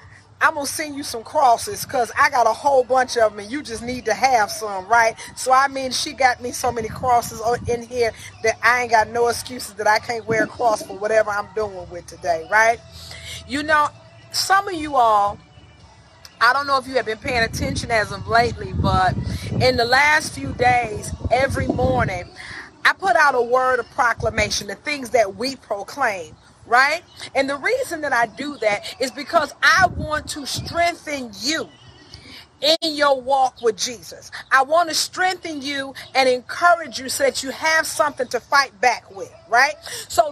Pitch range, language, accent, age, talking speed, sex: 235-305 Hz, English, American, 30-49, 195 wpm, female